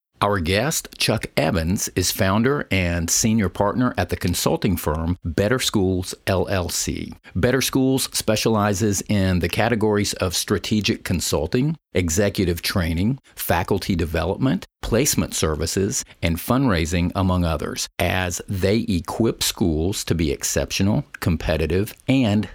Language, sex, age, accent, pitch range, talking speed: English, male, 50-69, American, 90-110 Hz, 115 wpm